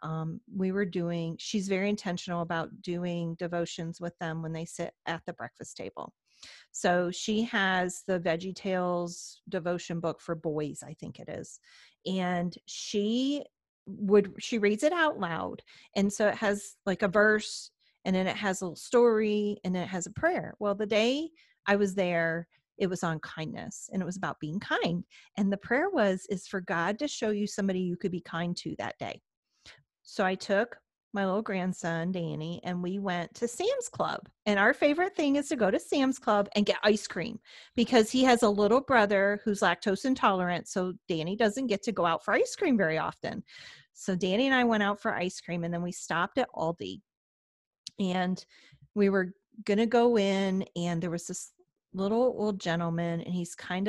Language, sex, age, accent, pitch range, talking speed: English, female, 40-59, American, 175-215 Hz, 195 wpm